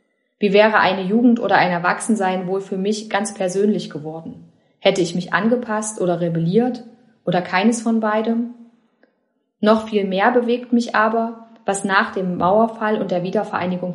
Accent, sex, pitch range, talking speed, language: German, female, 180-225 Hz, 155 wpm, German